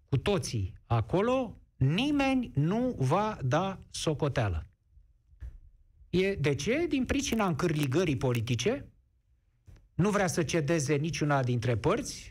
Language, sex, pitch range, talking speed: Romanian, male, 125-185 Hz, 100 wpm